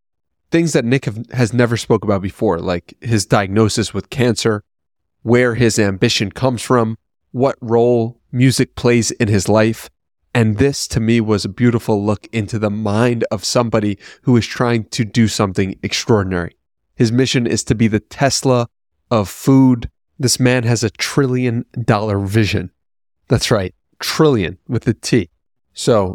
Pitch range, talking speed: 95-120 Hz, 155 wpm